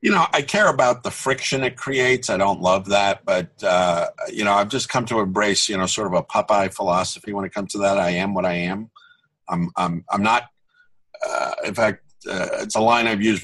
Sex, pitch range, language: male, 90-115 Hz, English